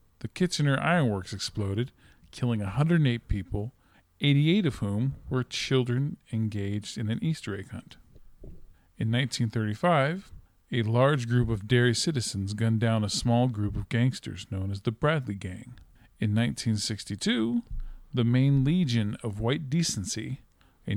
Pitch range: 105-135 Hz